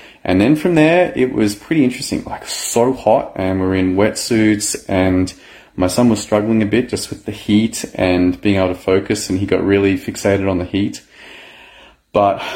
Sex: male